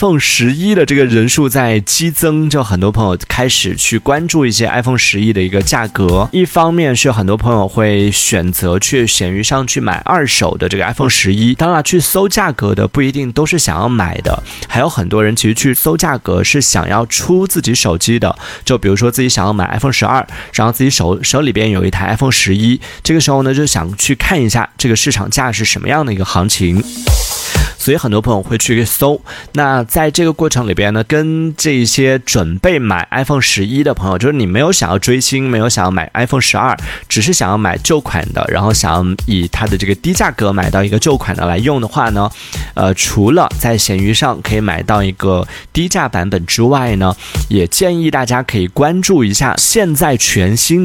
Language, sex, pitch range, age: Chinese, male, 100-140 Hz, 20-39